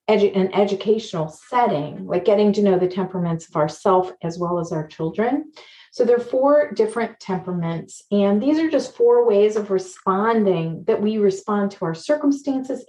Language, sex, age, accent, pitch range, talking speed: English, female, 40-59, American, 180-250 Hz, 170 wpm